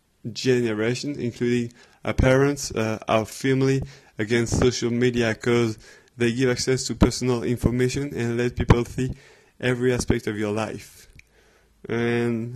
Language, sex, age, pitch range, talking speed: English, male, 20-39, 115-130 Hz, 130 wpm